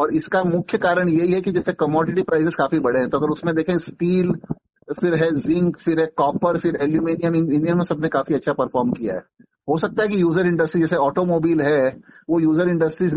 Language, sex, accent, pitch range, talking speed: Hindi, male, native, 150-175 Hz, 205 wpm